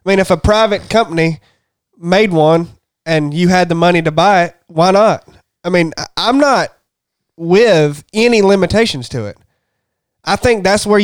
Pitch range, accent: 160-205 Hz, American